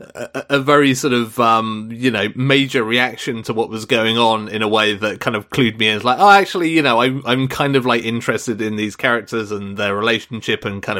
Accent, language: British, English